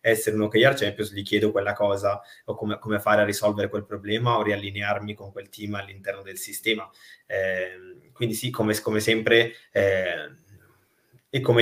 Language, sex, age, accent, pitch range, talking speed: Italian, male, 20-39, native, 105-115 Hz, 175 wpm